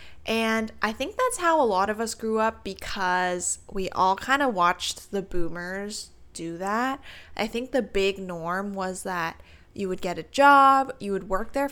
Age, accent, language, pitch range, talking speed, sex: 20-39, American, English, 180-235 Hz, 190 wpm, female